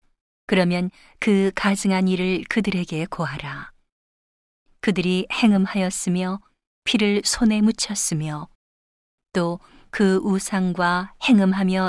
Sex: female